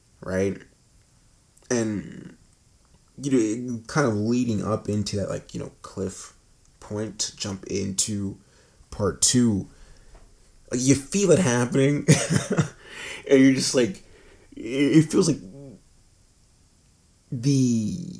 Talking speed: 105 wpm